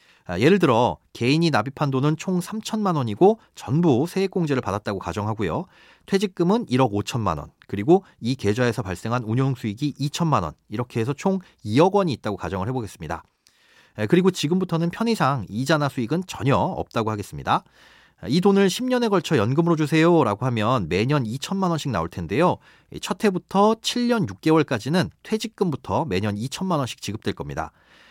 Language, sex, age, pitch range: Korean, male, 40-59, 120-185 Hz